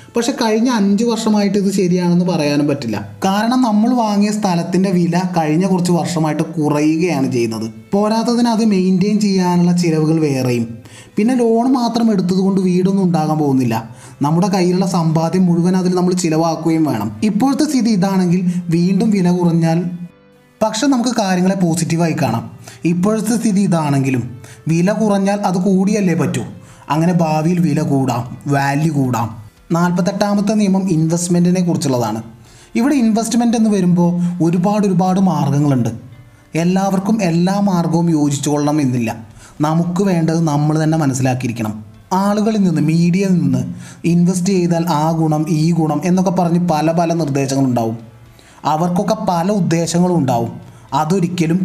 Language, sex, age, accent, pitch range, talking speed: Malayalam, male, 20-39, native, 145-195 Hz, 120 wpm